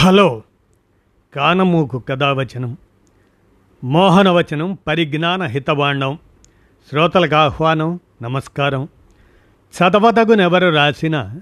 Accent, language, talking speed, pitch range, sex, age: native, Telugu, 60 wpm, 115-160 Hz, male, 50-69